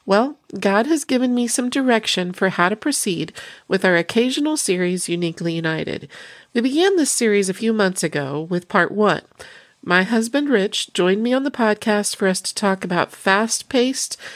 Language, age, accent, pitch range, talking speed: English, 40-59, American, 175-230 Hz, 175 wpm